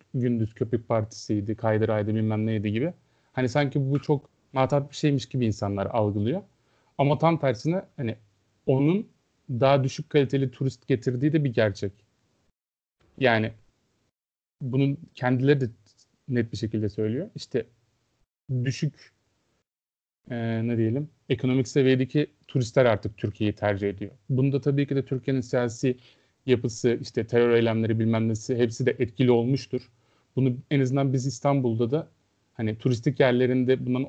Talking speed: 135 wpm